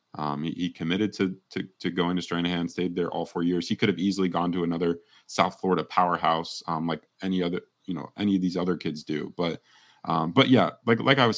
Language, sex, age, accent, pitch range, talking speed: English, male, 30-49, American, 85-95 Hz, 235 wpm